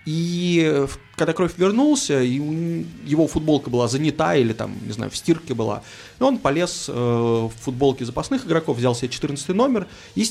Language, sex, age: Russian, male, 20-39